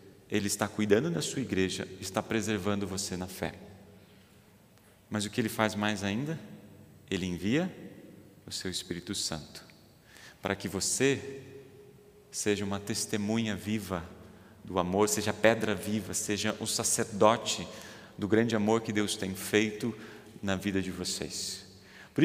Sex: male